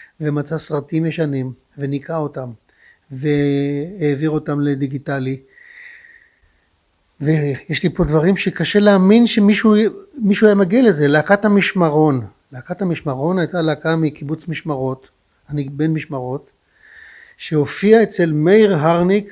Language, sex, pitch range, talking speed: Hebrew, male, 145-185 Hz, 100 wpm